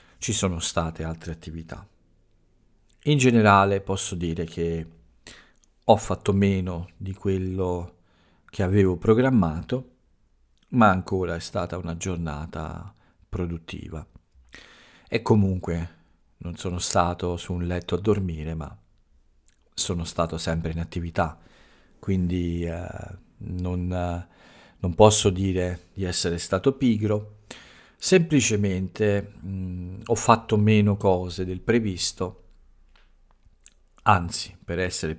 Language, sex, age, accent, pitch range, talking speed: Italian, male, 50-69, native, 85-105 Hz, 105 wpm